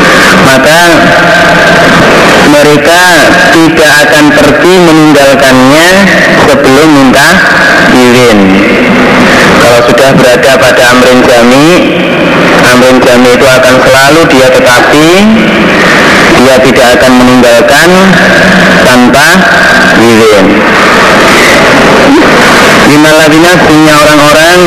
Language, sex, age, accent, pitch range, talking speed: Indonesian, male, 30-49, native, 120-155 Hz, 80 wpm